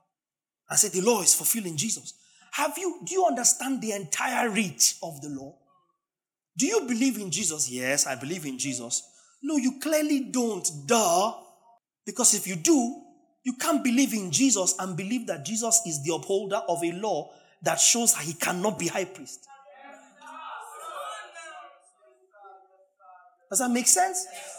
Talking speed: 155 wpm